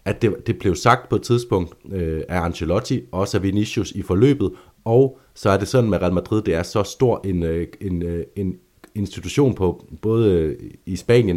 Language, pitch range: Danish, 85-105 Hz